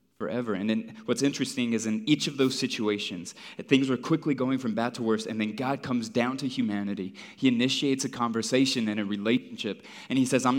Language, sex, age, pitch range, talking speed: English, male, 20-39, 100-120 Hz, 210 wpm